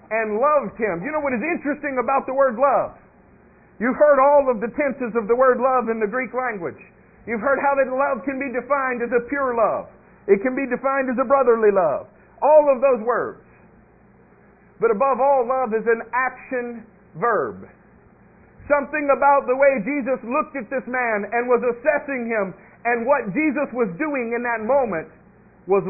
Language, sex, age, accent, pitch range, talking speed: English, male, 50-69, American, 210-275 Hz, 185 wpm